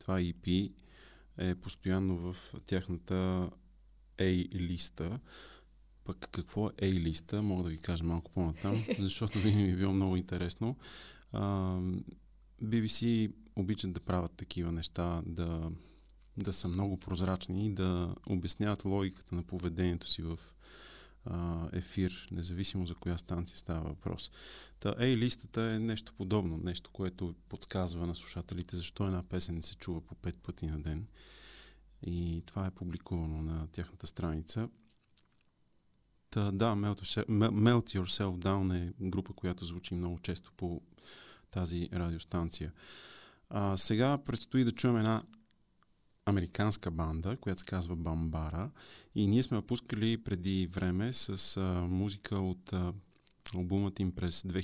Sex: male